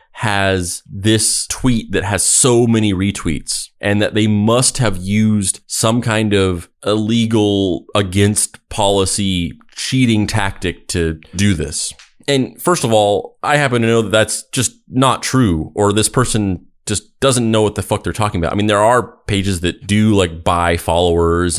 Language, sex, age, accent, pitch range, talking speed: English, male, 30-49, American, 85-110 Hz, 165 wpm